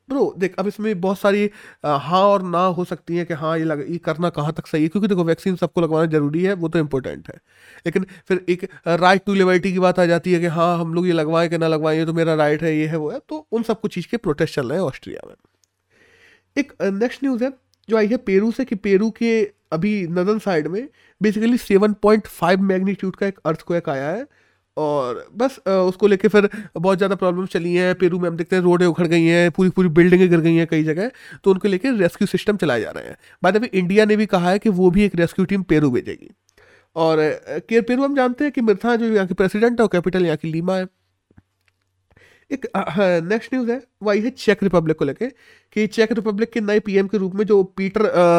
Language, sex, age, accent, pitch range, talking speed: Hindi, male, 30-49, native, 170-210 Hz, 235 wpm